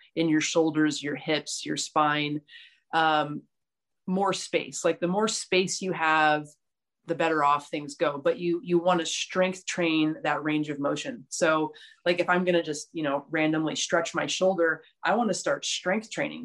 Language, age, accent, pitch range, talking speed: English, 30-49, American, 155-180 Hz, 185 wpm